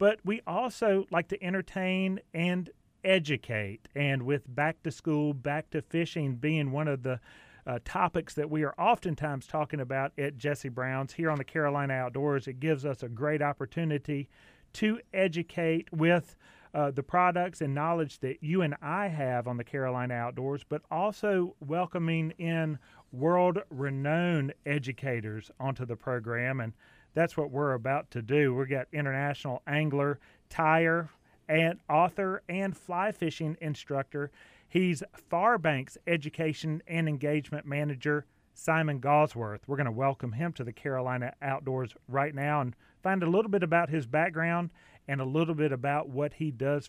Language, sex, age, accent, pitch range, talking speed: English, male, 40-59, American, 135-170 Hz, 155 wpm